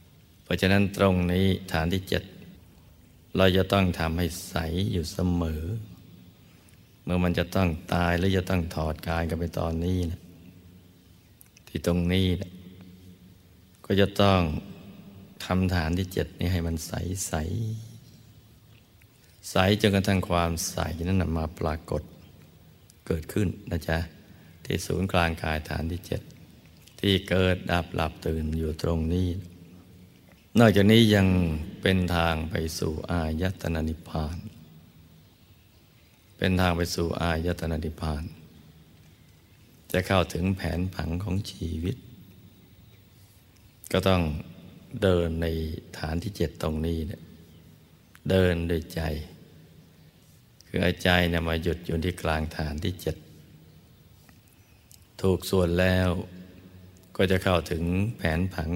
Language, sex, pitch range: Thai, male, 80-95 Hz